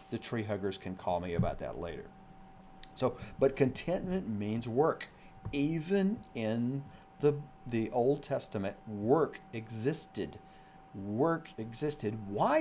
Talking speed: 120 wpm